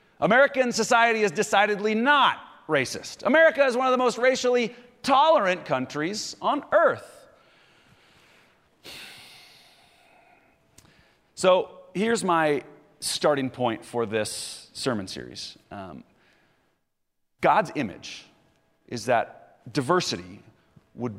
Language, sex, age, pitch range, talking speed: English, male, 30-49, 150-250 Hz, 95 wpm